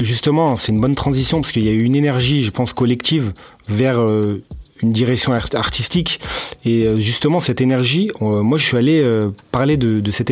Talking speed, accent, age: 210 wpm, French, 30-49